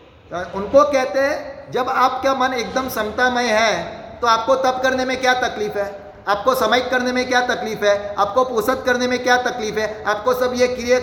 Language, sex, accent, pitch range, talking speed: Hindi, male, native, 200-250 Hz, 190 wpm